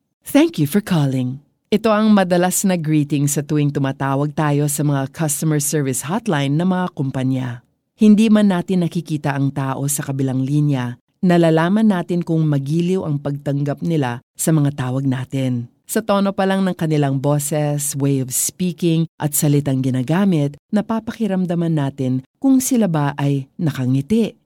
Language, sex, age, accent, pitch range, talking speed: Filipino, female, 40-59, native, 140-195 Hz, 150 wpm